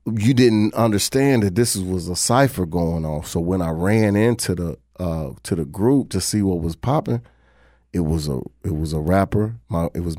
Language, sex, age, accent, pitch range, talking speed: English, male, 30-49, American, 85-105 Hz, 205 wpm